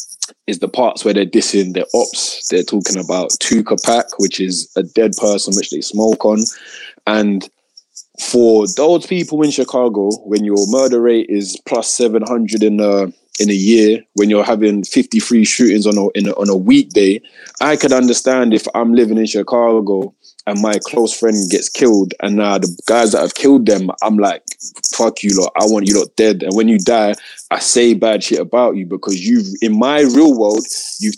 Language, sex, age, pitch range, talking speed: English, male, 20-39, 105-130 Hz, 195 wpm